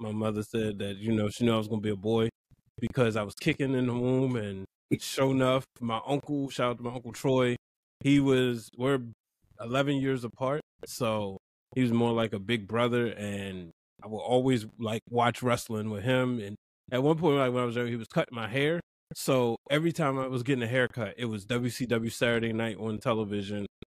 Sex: male